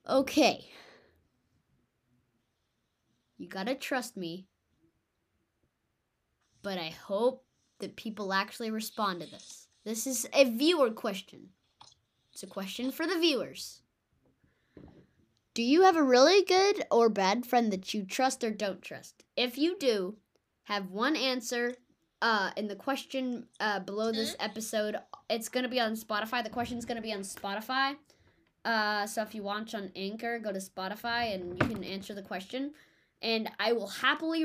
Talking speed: 155 wpm